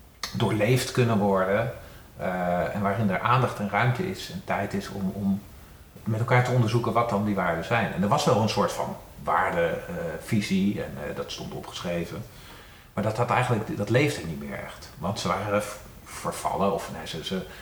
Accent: Dutch